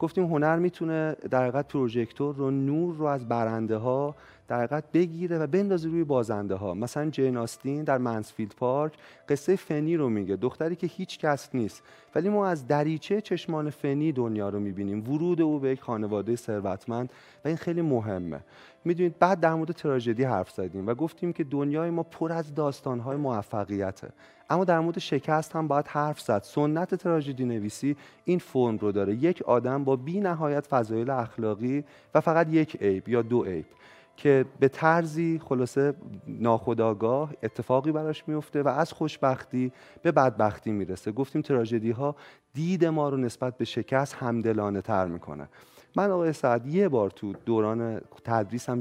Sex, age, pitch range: male, 30-49, 115-160 Hz